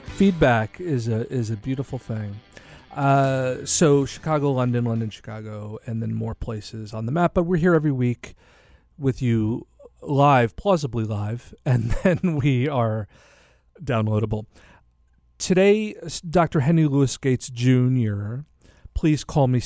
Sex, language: male, English